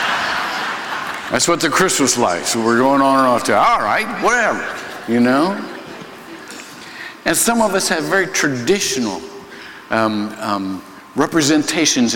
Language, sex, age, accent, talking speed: English, male, 60-79, American, 130 wpm